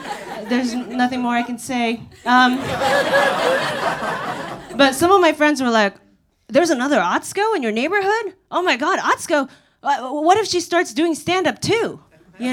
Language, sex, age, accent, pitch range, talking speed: English, female, 30-49, American, 235-315 Hz, 160 wpm